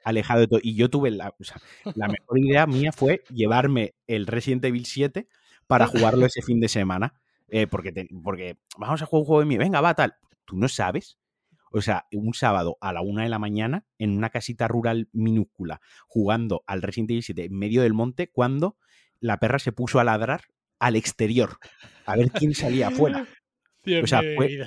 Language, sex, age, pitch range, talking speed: Spanish, male, 30-49, 105-135 Hz, 200 wpm